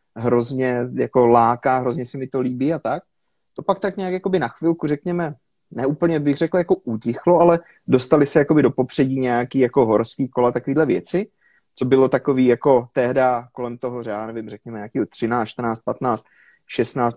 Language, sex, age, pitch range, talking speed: Slovak, male, 30-49, 125-145 Hz, 175 wpm